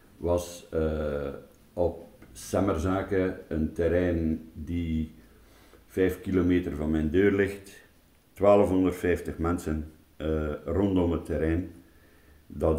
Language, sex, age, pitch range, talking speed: Dutch, male, 60-79, 80-100 Hz, 95 wpm